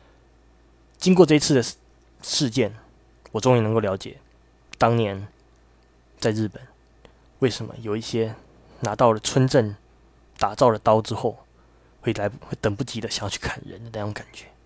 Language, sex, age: Chinese, male, 20-39